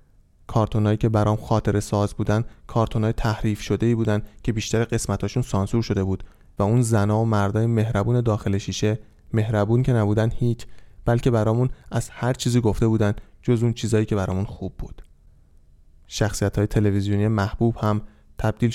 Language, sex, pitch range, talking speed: Persian, male, 100-115 Hz, 150 wpm